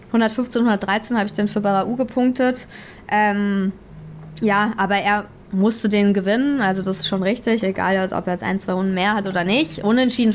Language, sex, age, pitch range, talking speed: German, female, 20-39, 195-220 Hz, 185 wpm